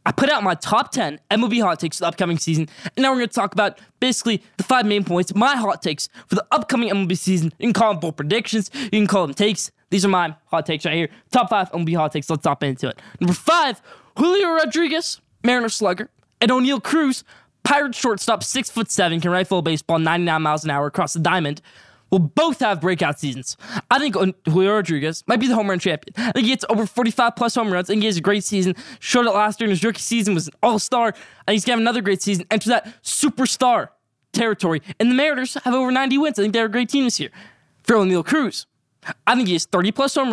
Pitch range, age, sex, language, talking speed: 175-240 Hz, 20-39, male, English, 245 wpm